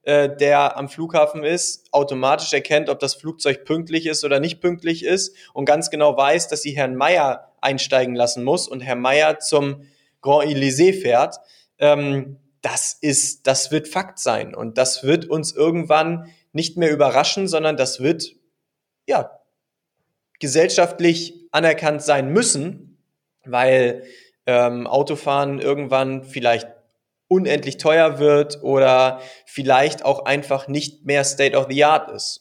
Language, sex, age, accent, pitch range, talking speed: German, male, 20-39, German, 135-155 Hz, 135 wpm